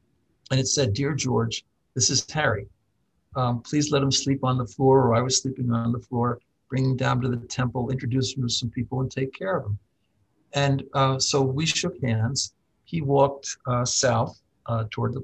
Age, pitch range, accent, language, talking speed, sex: 60-79, 120-140 Hz, American, English, 205 wpm, male